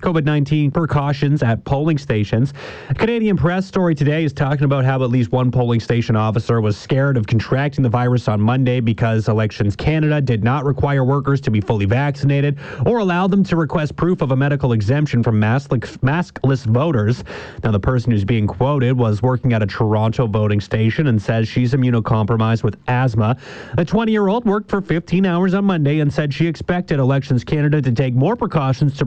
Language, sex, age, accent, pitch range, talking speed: English, male, 30-49, American, 115-150 Hz, 190 wpm